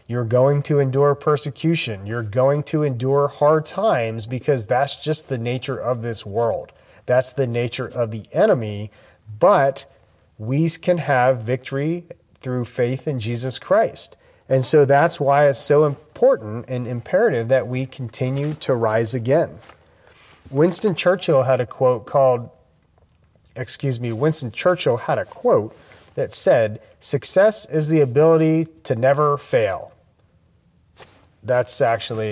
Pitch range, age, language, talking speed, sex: 120-150 Hz, 30-49, English, 135 wpm, male